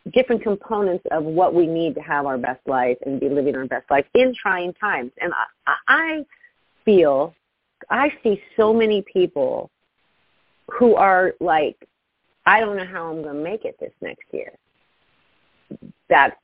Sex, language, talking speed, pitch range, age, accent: female, English, 165 wpm, 160-230 Hz, 40-59, American